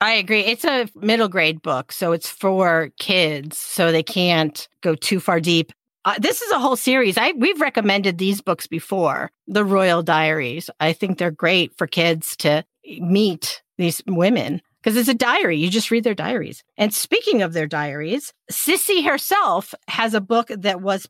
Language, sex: English, female